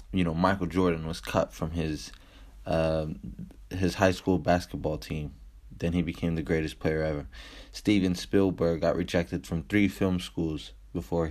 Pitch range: 80-95 Hz